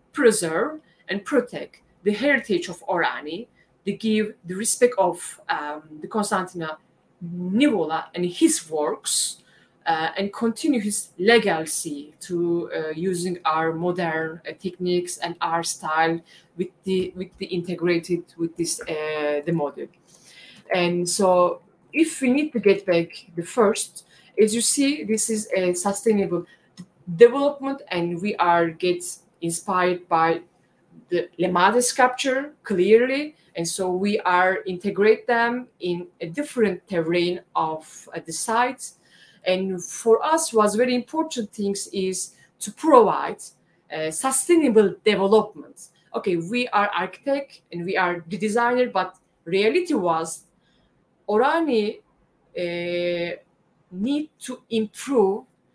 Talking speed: 125 wpm